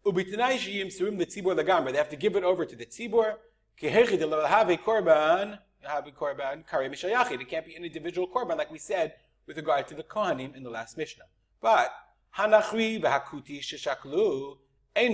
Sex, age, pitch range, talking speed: male, 30-49, 150-215 Hz, 185 wpm